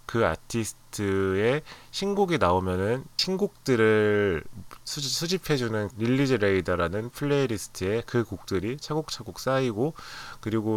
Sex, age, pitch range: male, 20-39, 95-135 Hz